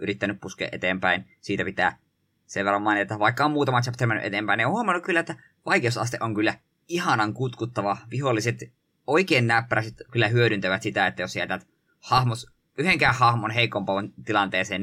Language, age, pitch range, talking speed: Finnish, 20-39, 100-120 Hz, 160 wpm